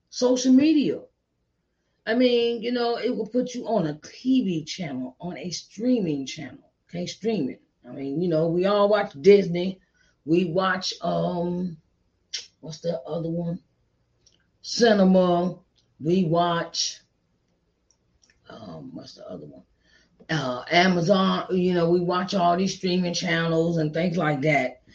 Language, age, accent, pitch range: English, 30-49, American, 165-220 Hz